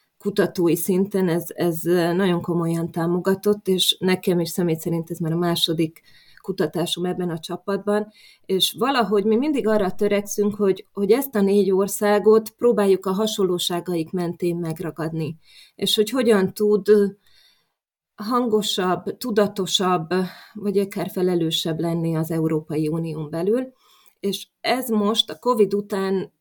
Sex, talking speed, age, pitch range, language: female, 130 wpm, 20-39, 170-205 Hz, Hungarian